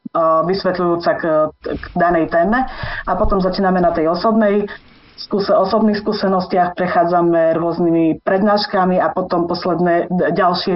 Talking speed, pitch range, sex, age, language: 110 wpm, 165-190 Hz, female, 30-49, Slovak